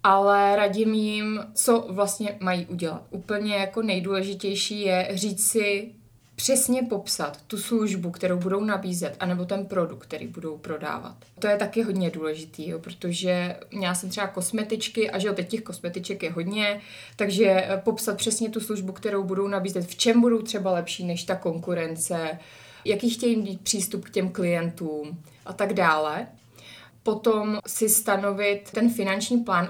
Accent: native